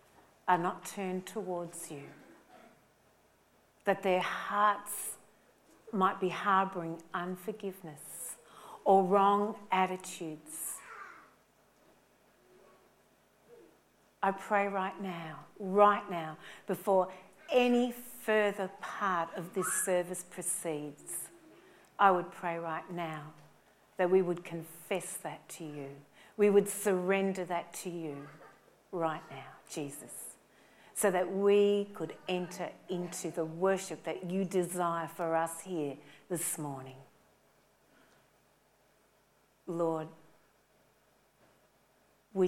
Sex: female